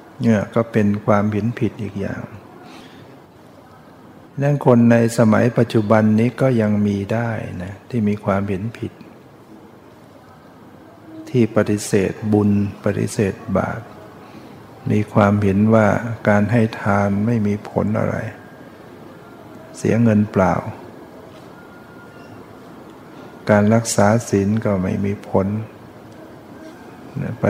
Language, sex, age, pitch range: Thai, male, 60-79, 105-115 Hz